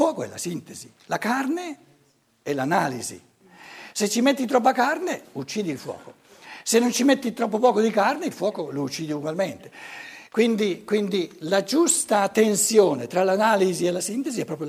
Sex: male